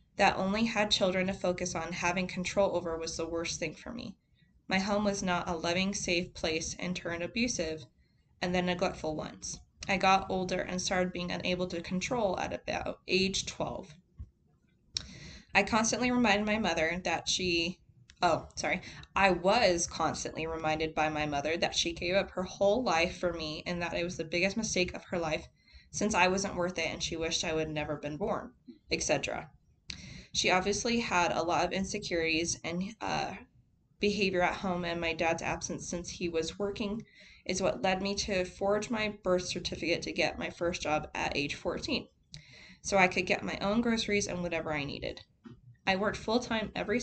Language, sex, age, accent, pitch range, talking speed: English, female, 20-39, American, 170-195 Hz, 185 wpm